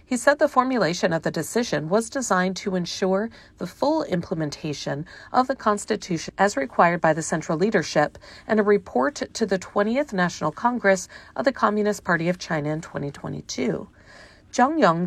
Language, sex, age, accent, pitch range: Chinese, female, 40-59, American, 170-225 Hz